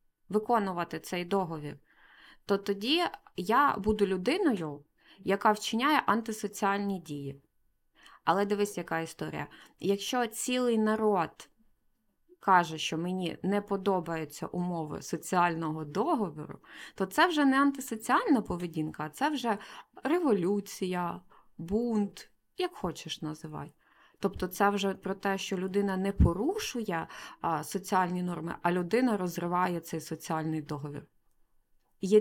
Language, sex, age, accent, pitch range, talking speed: Ukrainian, female, 20-39, native, 175-225 Hz, 110 wpm